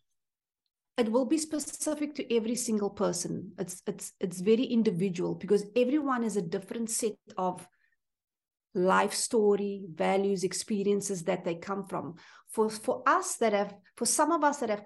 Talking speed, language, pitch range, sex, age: 160 wpm, English, 195-235 Hz, female, 50-69